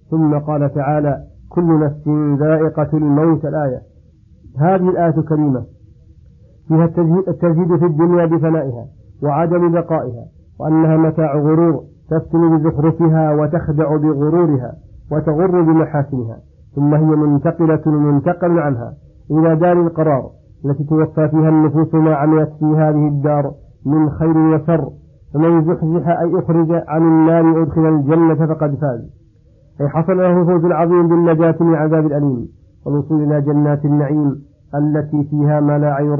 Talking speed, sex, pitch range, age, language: 125 wpm, male, 145-160 Hz, 50-69, Arabic